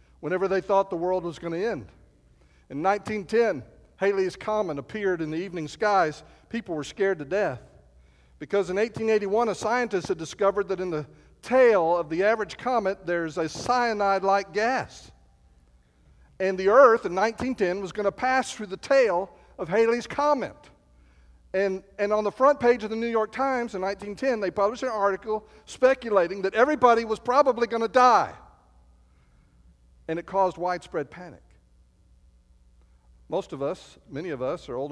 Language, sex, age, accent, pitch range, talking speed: English, male, 50-69, American, 140-215 Hz, 160 wpm